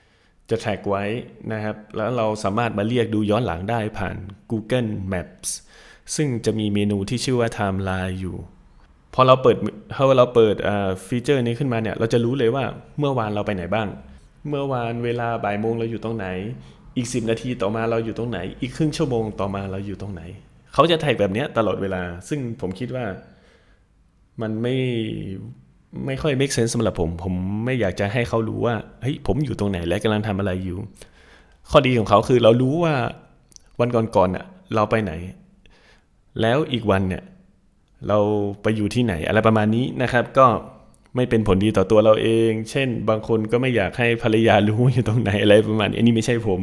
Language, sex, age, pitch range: Thai, male, 20-39, 100-120 Hz